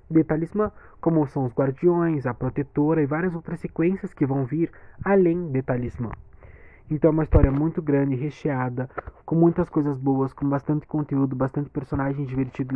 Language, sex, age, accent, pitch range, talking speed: Portuguese, male, 20-39, Brazilian, 140-175 Hz, 160 wpm